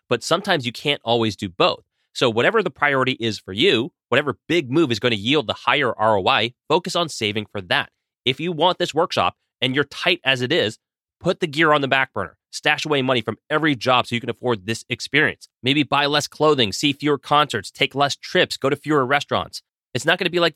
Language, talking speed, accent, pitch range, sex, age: English, 230 wpm, American, 110-145 Hz, male, 30-49